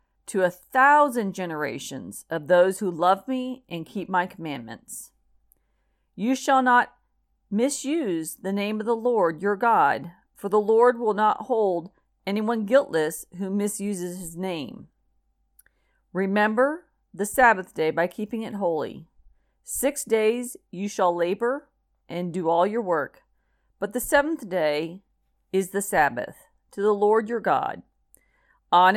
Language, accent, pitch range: English, American, 180-230 Hz